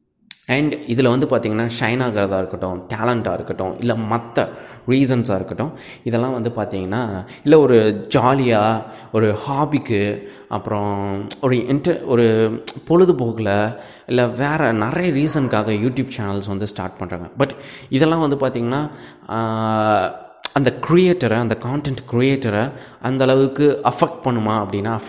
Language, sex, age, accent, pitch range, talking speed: Tamil, male, 20-39, native, 105-135 Hz, 115 wpm